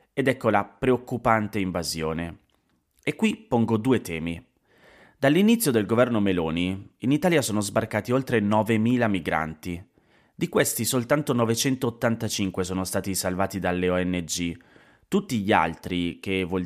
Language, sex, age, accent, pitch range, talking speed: Italian, male, 30-49, native, 95-120 Hz, 125 wpm